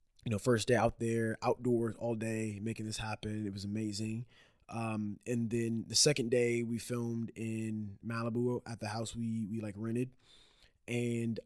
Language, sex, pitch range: English, male, 110-130 Hz